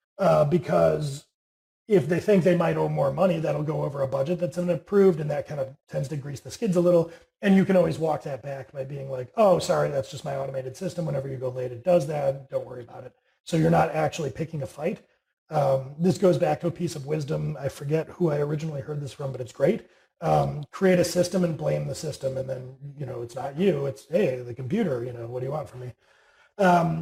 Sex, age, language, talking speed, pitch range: male, 30-49, English, 245 wpm, 140-180 Hz